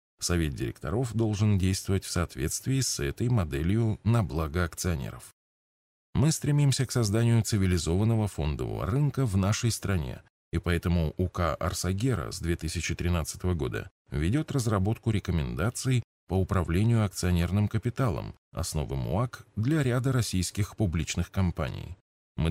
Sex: male